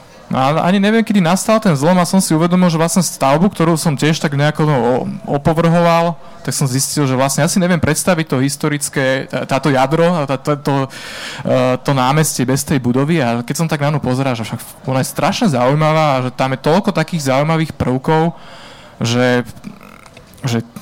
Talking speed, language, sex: 185 wpm, Slovak, male